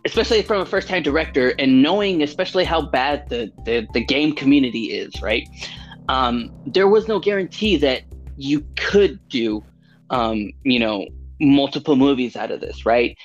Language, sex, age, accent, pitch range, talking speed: English, male, 20-39, American, 115-160 Hz, 160 wpm